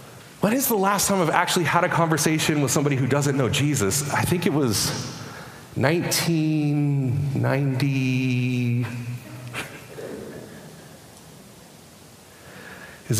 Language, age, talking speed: English, 30-49, 100 wpm